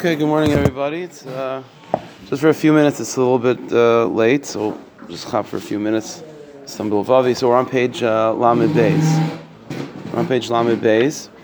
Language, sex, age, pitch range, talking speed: English, male, 30-49, 115-135 Hz, 185 wpm